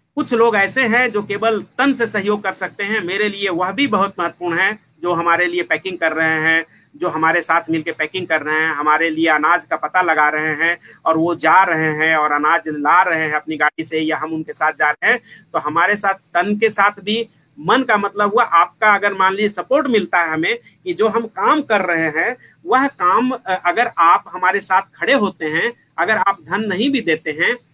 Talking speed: 225 wpm